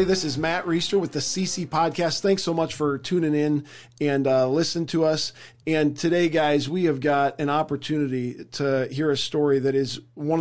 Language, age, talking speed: English, 40-59, 195 wpm